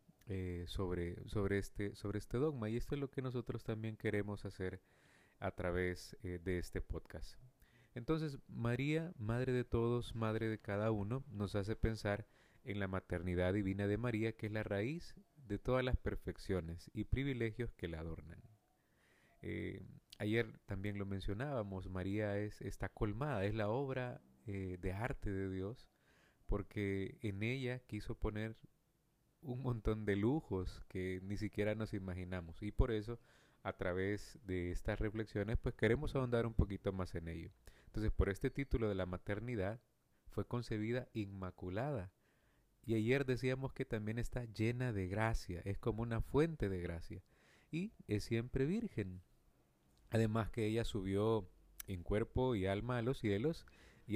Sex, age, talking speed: male, 30-49, 155 wpm